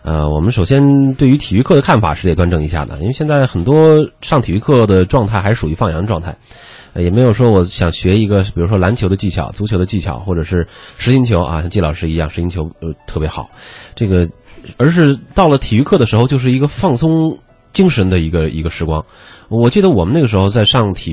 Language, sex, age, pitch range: Chinese, male, 30-49, 80-115 Hz